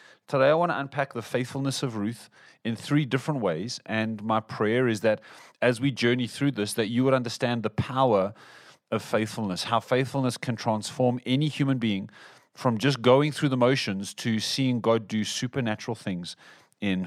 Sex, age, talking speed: male, 30-49, 180 wpm